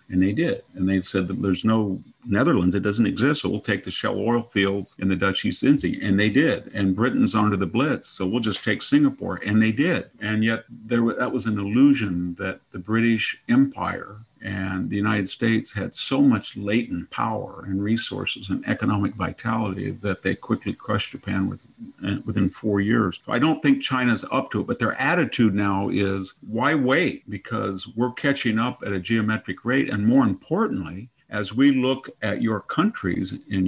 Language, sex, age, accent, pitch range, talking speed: English, male, 50-69, American, 100-125 Hz, 190 wpm